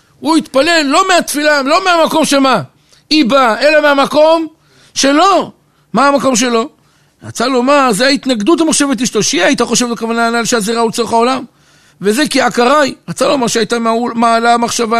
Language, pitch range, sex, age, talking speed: Hebrew, 210-275 Hz, male, 60-79, 150 wpm